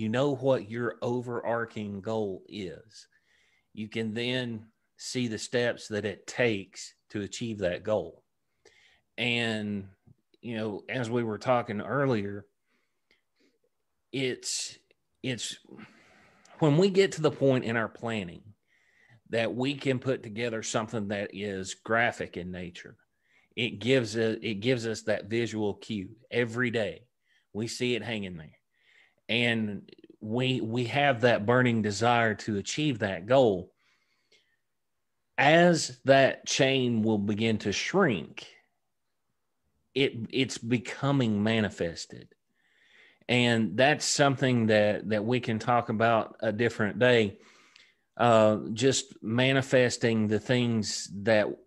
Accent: American